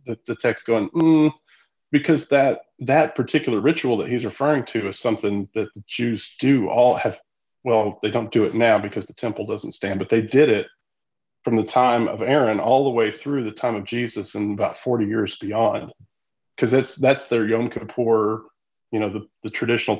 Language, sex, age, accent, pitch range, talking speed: English, male, 40-59, American, 110-130 Hz, 200 wpm